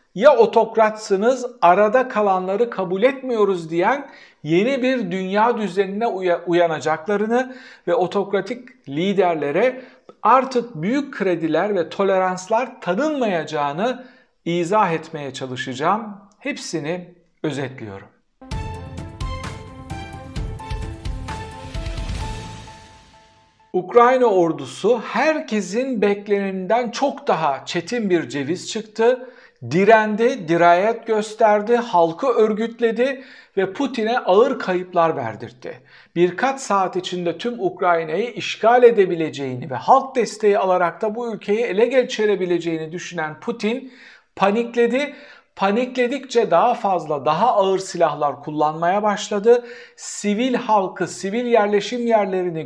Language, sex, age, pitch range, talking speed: Turkish, male, 60-79, 170-240 Hz, 90 wpm